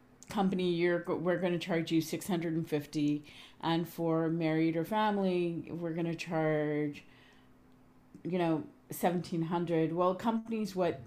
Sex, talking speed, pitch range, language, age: female, 125 wpm, 155-175 Hz, English, 40-59